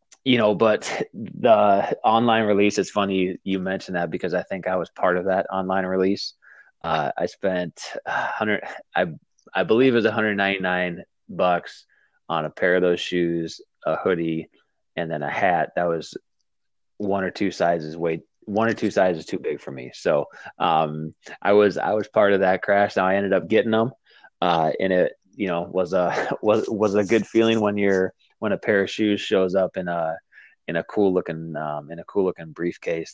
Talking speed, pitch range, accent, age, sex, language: 195 wpm, 85-100 Hz, American, 20-39, male, English